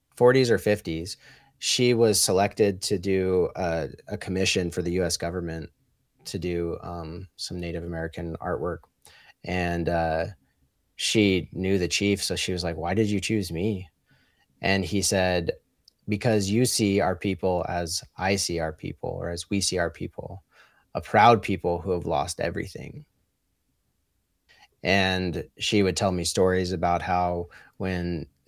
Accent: American